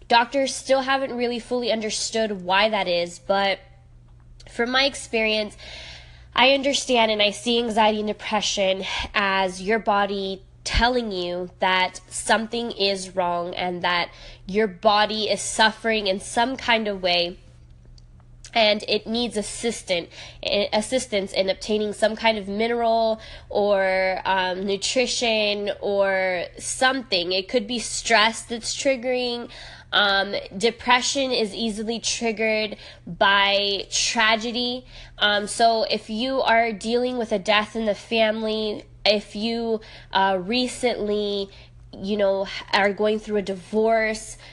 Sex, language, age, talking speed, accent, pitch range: female, English, 10-29, 125 wpm, American, 190-225 Hz